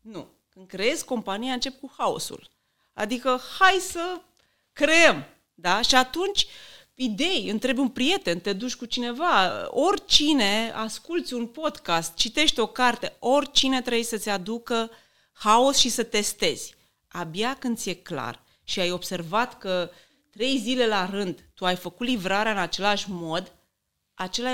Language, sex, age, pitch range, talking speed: Romanian, female, 30-49, 200-270 Hz, 140 wpm